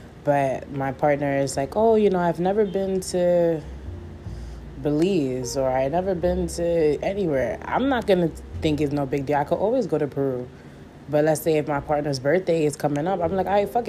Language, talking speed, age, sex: English, 210 wpm, 20-39, female